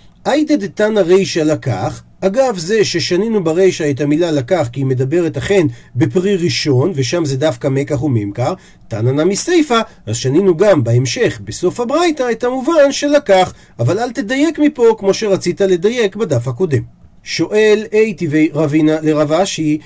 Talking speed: 145 wpm